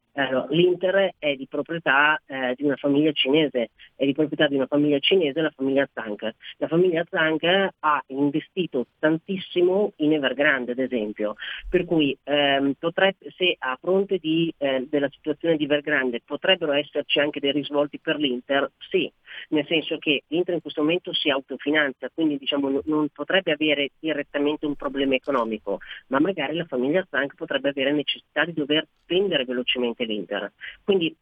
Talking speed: 160 wpm